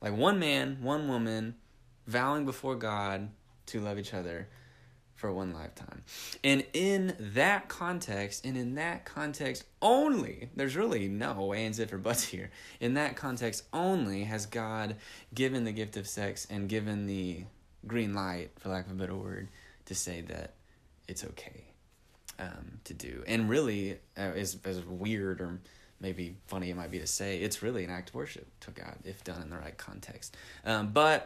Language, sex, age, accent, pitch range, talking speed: English, male, 20-39, American, 95-115 Hz, 175 wpm